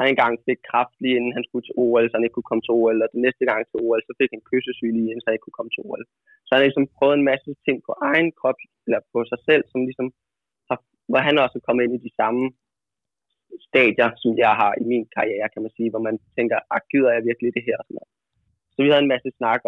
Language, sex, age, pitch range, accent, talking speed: Danish, male, 20-39, 115-130 Hz, native, 265 wpm